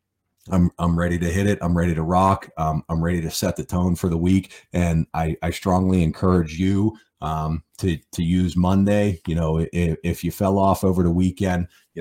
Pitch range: 85-95 Hz